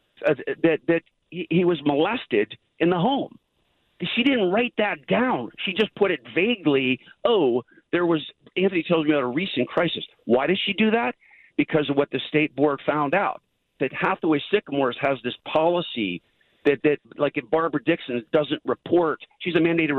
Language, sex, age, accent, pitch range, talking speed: English, male, 50-69, American, 145-220 Hz, 180 wpm